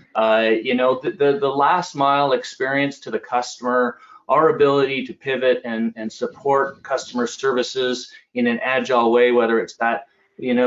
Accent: American